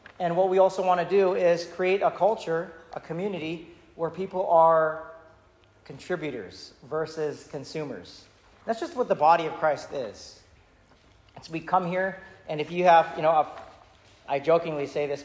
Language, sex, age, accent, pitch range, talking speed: English, male, 40-59, American, 140-170 Hz, 170 wpm